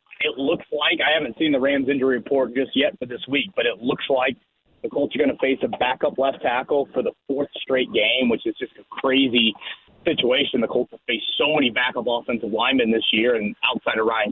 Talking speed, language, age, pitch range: 230 wpm, English, 30-49, 120-155 Hz